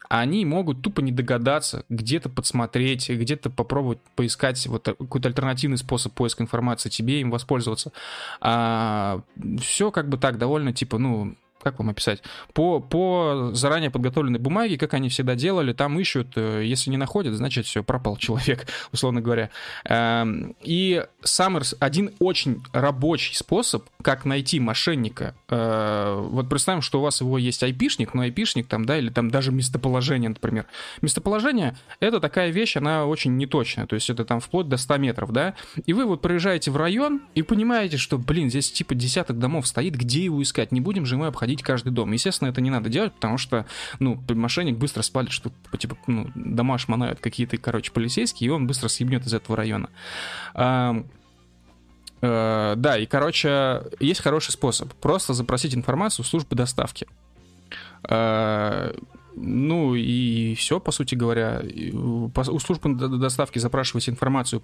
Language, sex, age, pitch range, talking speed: Russian, male, 20-39, 115-145 Hz, 150 wpm